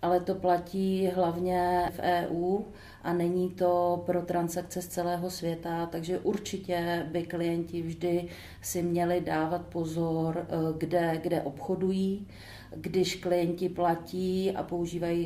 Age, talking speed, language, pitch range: 40-59, 120 wpm, Czech, 170-190 Hz